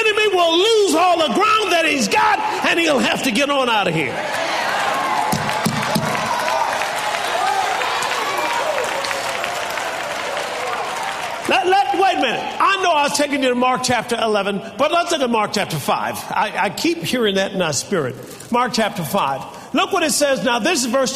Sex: male